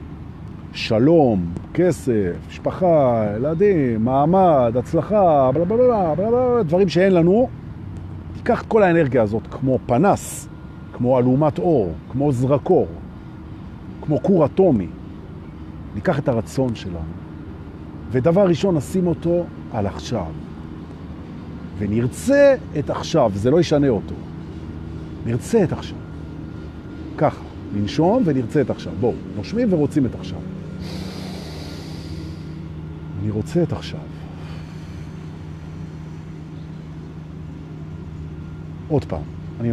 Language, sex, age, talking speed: Hebrew, male, 50-69, 80 wpm